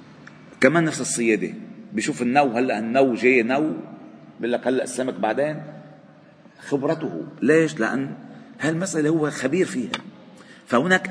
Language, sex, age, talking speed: Arabic, male, 40-59, 120 wpm